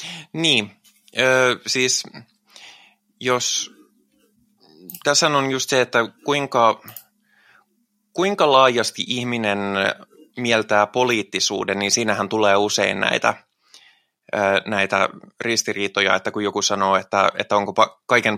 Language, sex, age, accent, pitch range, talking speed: Finnish, male, 20-39, native, 105-125 Hz, 95 wpm